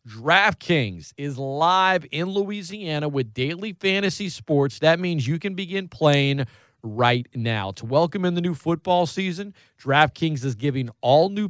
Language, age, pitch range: English, 40-59, 120-155 Hz